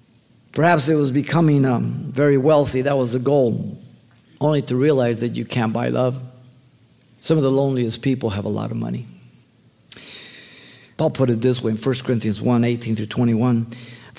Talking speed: 165 wpm